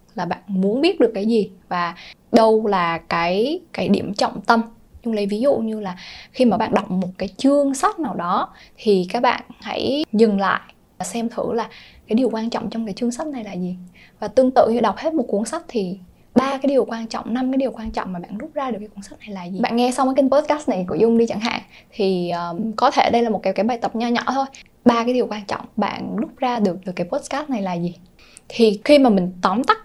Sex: female